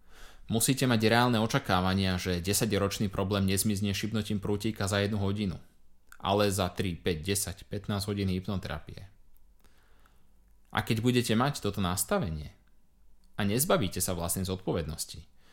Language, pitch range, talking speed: Slovak, 95-120 Hz, 130 wpm